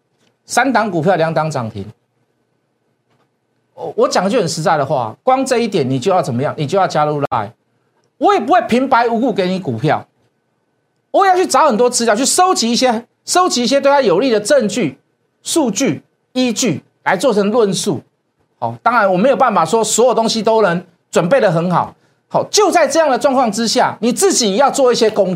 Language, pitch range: Chinese, 160-255 Hz